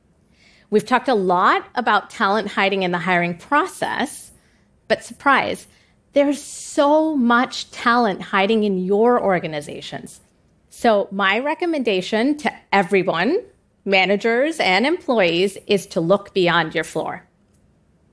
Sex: female